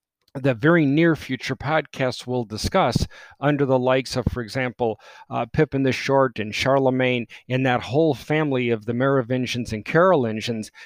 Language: English